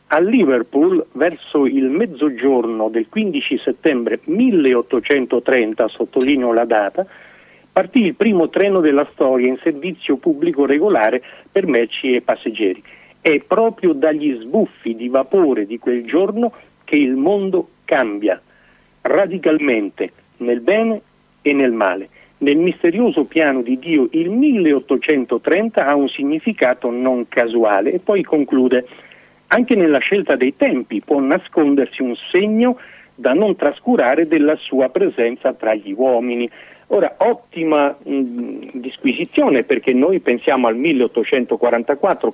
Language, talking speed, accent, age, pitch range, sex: Italian, 120 wpm, native, 50-69, 125-210 Hz, male